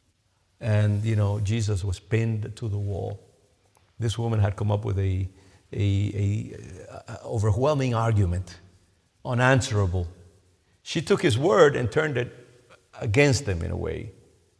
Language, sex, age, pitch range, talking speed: English, male, 50-69, 95-110 Hz, 135 wpm